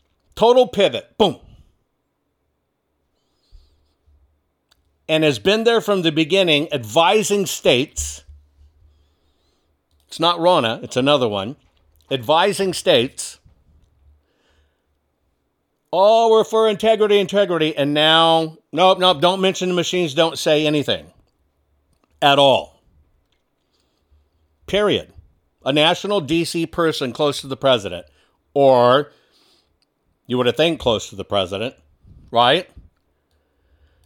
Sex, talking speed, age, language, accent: male, 100 wpm, 60-79, English, American